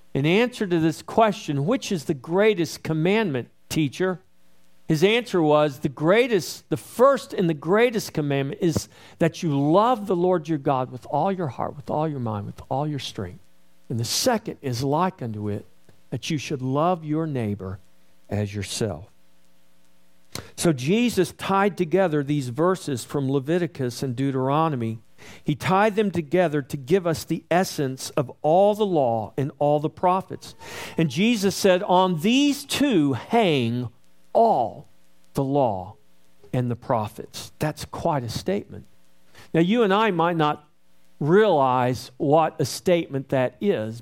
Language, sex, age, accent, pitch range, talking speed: English, male, 50-69, American, 120-185 Hz, 155 wpm